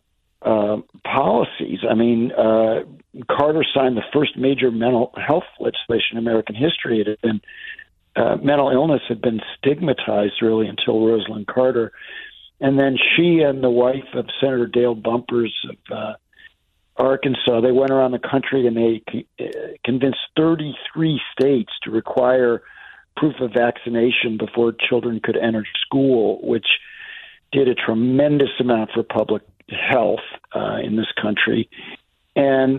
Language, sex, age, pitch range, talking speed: English, male, 50-69, 115-135 Hz, 130 wpm